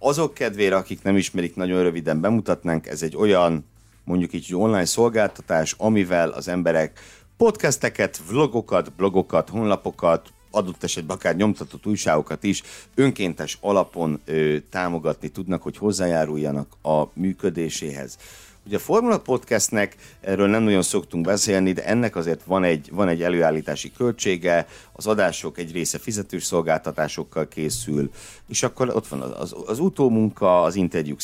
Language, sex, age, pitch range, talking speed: Hungarian, male, 60-79, 75-100 Hz, 135 wpm